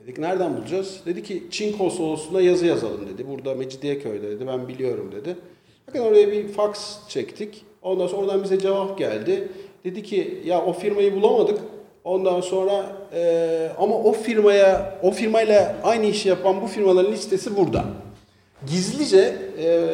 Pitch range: 155-205 Hz